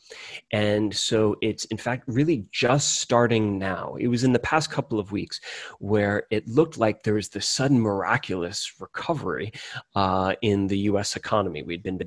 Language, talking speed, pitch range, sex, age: English, 170 wpm, 100-115 Hz, male, 30-49